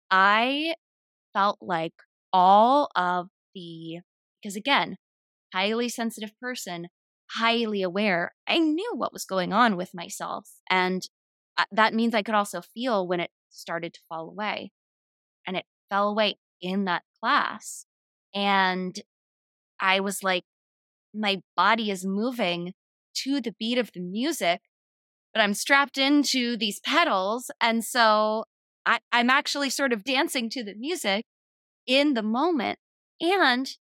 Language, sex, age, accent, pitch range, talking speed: English, female, 20-39, American, 195-275 Hz, 130 wpm